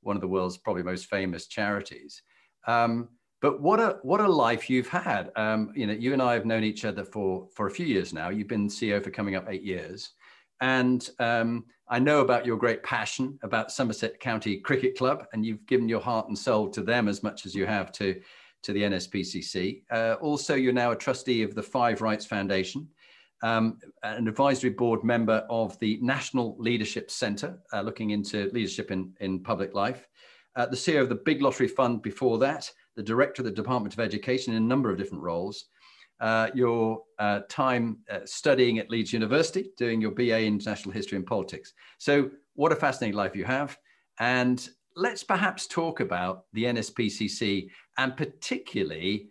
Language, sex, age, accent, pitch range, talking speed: English, male, 40-59, British, 105-125 Hz, 190 wpm